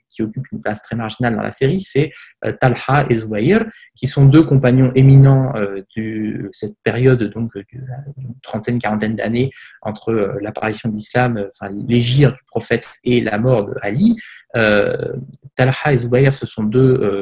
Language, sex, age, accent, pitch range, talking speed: French, male, 20-39, French, 110-140 Hz, 155 wpm